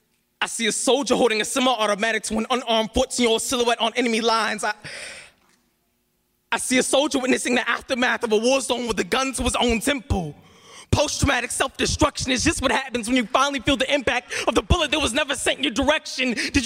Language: English